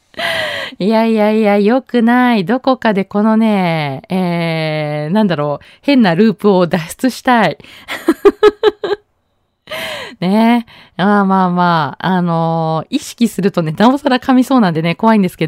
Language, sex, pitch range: Japanese, female, 175-245 Hz